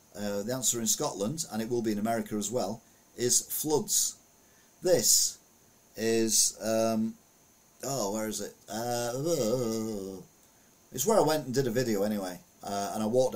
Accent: British